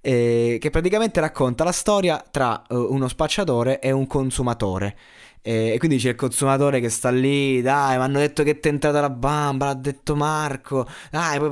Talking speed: 190 wpm